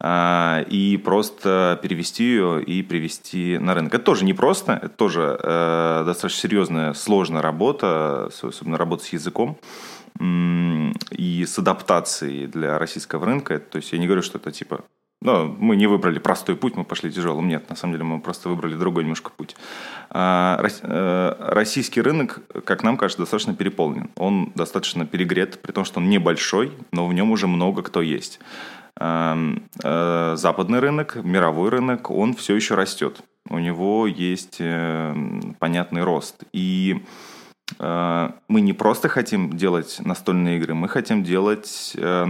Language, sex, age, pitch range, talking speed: Russian, male, 20-39, 85-100 Hz, 150 wpm